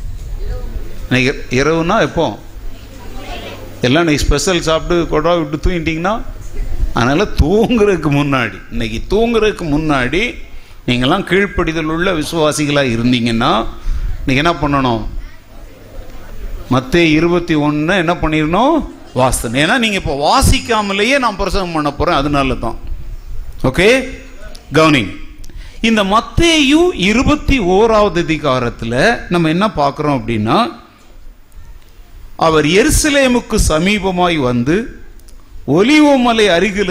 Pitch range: 120-185 Hz